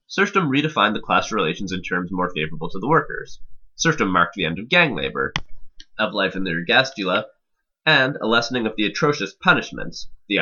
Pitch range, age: 95-130 Hz, 20-39